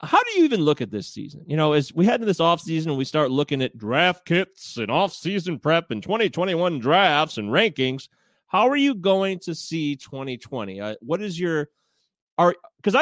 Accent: American